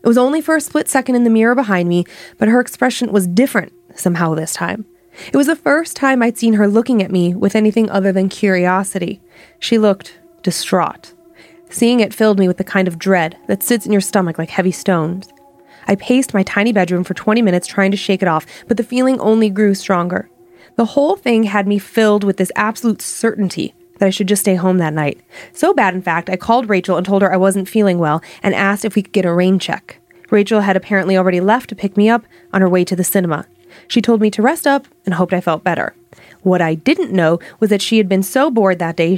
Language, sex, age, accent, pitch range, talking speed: English, female, 30-49, American, 180-220 Hz, 235 wpm